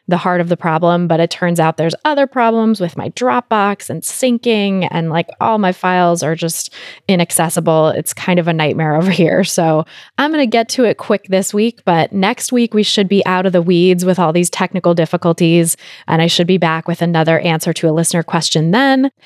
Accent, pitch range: American, 165-200 Hz